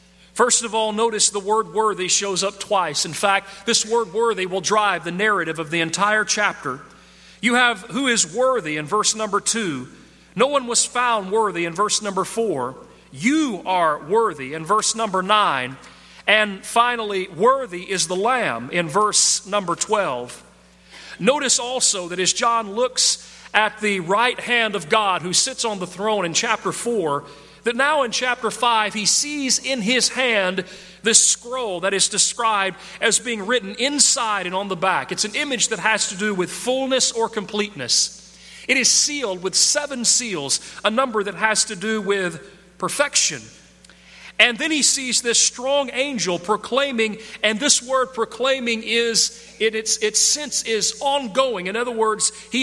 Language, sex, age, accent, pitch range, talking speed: English, male, 40-59, American, 190-240 Hz, 170 wpm